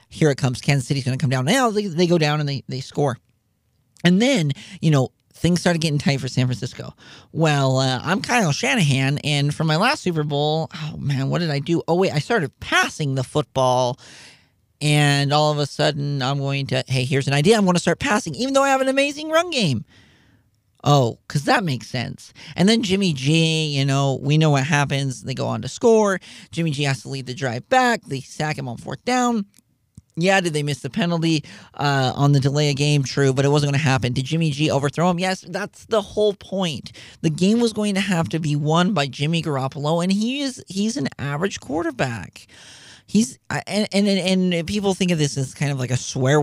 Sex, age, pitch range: male, 40-59, 135-180 Hz